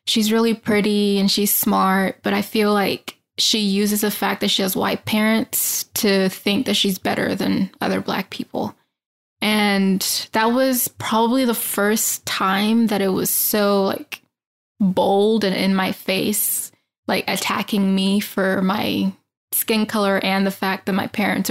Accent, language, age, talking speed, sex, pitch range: American, English, 10-29, 160 wpm, female, 200-220 Hz